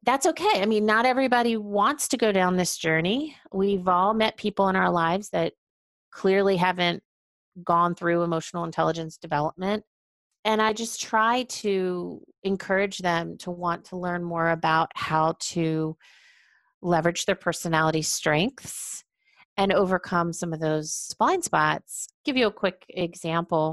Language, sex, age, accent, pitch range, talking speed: English, female, 30-49, American, 165-215 Hz, 145 wpm